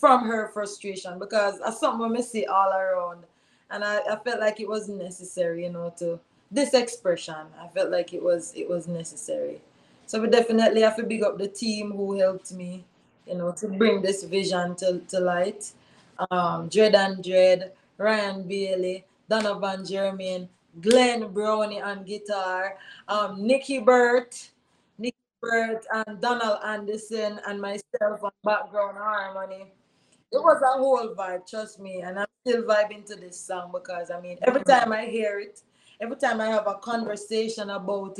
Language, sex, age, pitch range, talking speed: English, female, 20-39, 190-230 Hz, 165 wpm